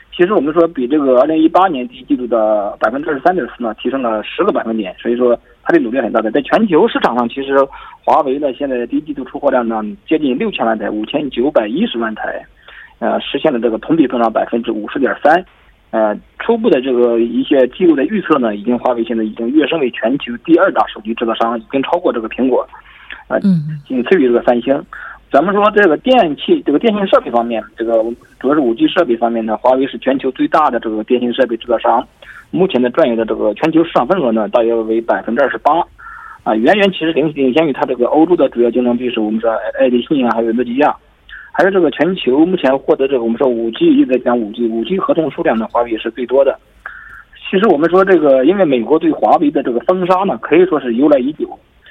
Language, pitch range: Korean, 115-185 Hz